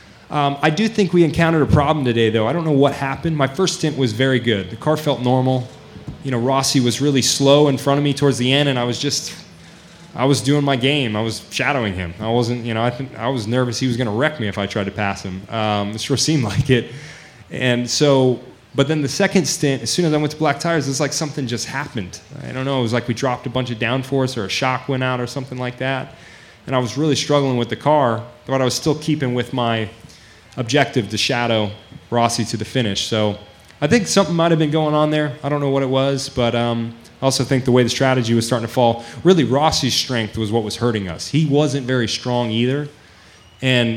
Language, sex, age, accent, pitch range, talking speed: English, male, 20-39, American, 115-140 Hz, 250 wpm